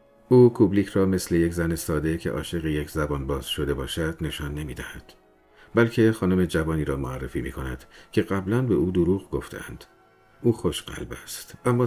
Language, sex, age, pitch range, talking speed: Persian, male, 50-69, 75-110 Hz, 175 wpm